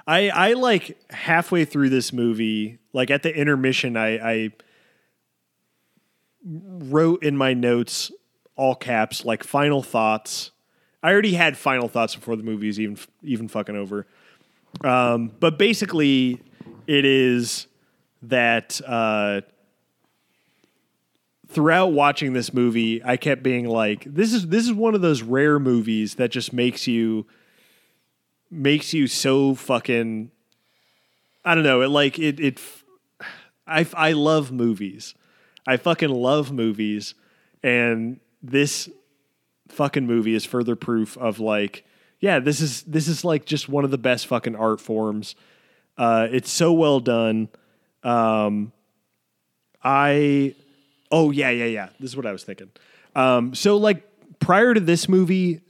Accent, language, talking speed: American, English, 140 wpm